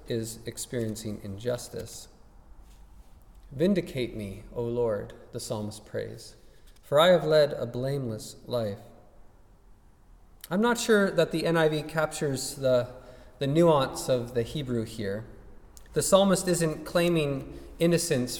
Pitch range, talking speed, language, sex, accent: 115-170 Hz, 115 wpm, English, male, American